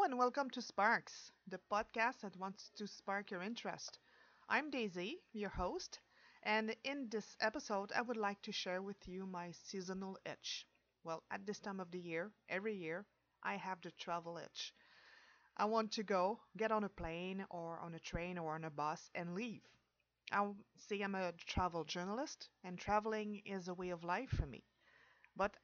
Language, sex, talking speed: English, female, 185 wpm